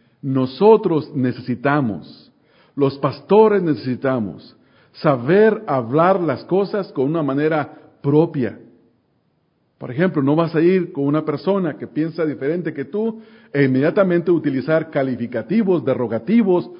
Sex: male